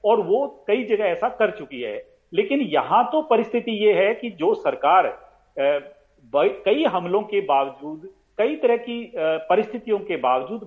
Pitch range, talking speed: 175-275 Hz, 150 wpm